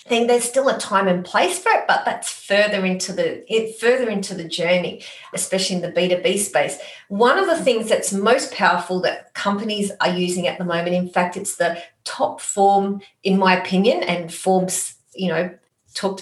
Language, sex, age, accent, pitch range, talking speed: English, female, 30-49, Australian, 175-205 Hz, 190 wpm